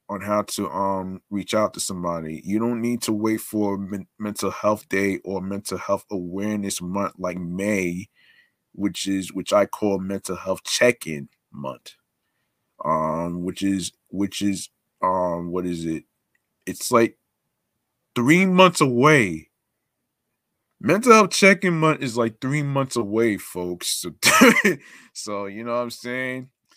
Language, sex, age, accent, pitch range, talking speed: English, male, 20-39, American, 95-115 Hz, 145 wpm